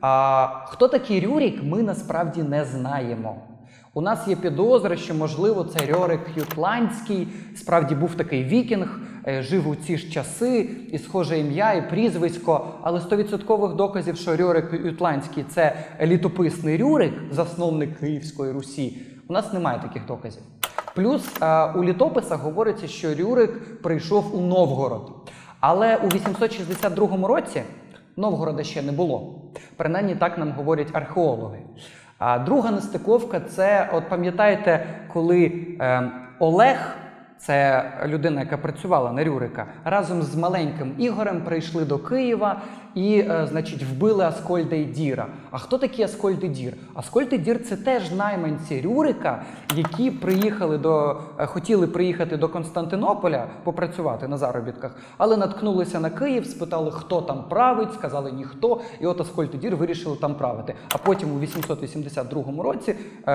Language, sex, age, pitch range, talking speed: Ukrainian, male, 20-39, 150-200 Hz, 135 wpm